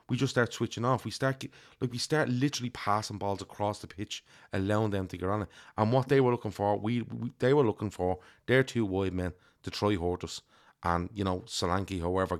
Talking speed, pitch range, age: 225 wpm, 90-120 Hz, 30-49